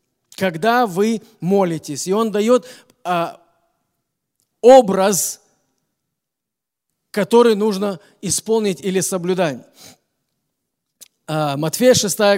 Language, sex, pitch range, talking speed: Russian, male, 170-215 Hz, 70 wpm